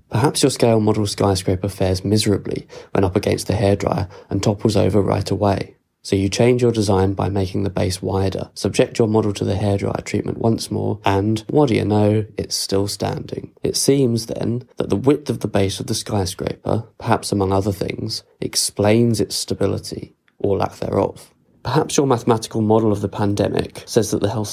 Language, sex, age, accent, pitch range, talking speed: English, male, 20-39, British, 100-115 Hz, 190 wpm